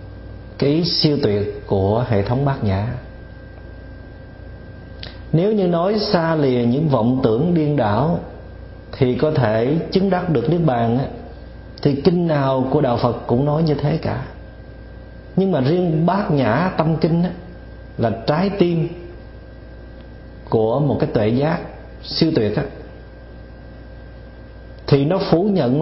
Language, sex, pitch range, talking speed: Vietnamese, male, 105-165 Hz, 140 wpm